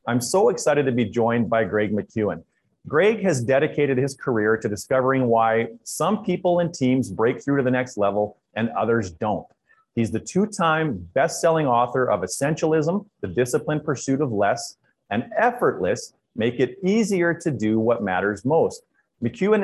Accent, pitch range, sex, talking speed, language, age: American, 115-150 Hz, male, 160 wpm, English, 30-49